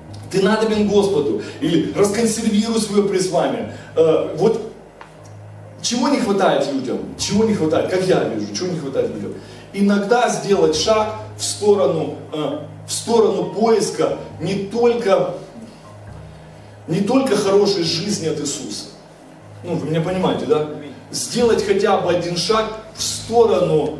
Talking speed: 125 wpm